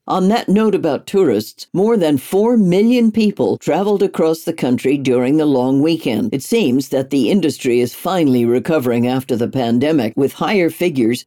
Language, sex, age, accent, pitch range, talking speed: English, female, 60-79, American, 135-185 Hz, 170 wpm